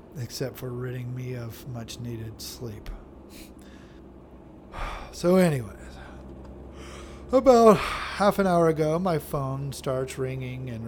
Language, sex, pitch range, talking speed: English, male, 115-175 Hz, 105 wpm